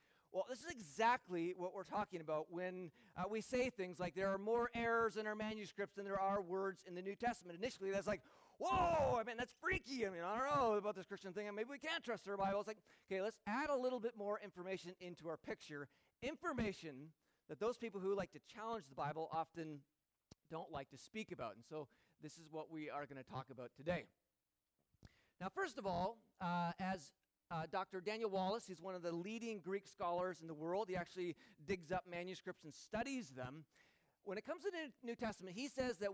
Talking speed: 215 wpm